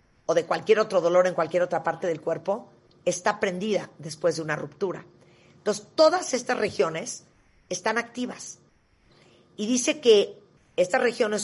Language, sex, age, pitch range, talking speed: Spanish, female, 40-59, 170-205 Hz, 145 wpm